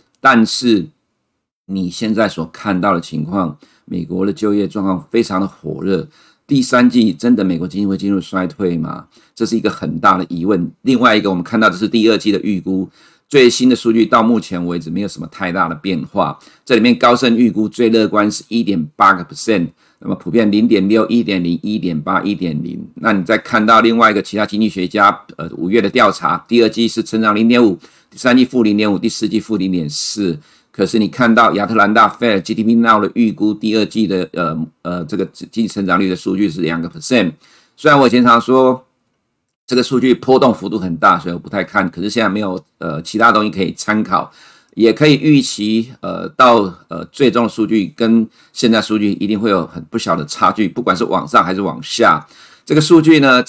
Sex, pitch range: male, 95-115 Hz